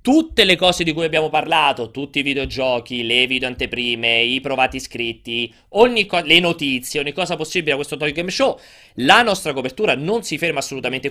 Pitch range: 125-165 Hz